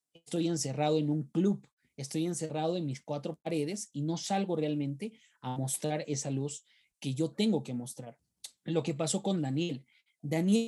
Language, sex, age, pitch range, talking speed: Spanish, male, 30-49, 145-190 Hz, 170 wpm